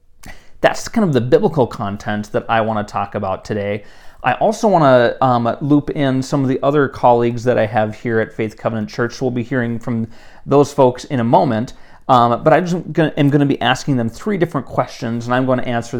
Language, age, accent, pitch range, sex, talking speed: English, 30-49, American, 105-130 Hz, male, 220 wpm